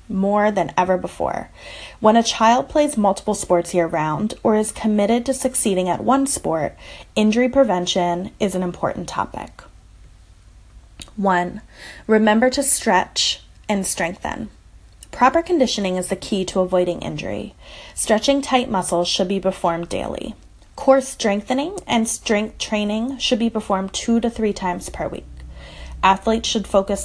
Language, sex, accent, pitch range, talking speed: English, female, American, 180-230 Hz, 140 wpm